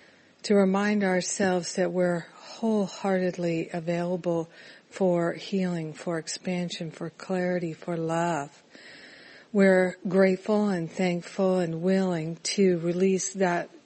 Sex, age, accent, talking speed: female, 60-79, American, 105 wpm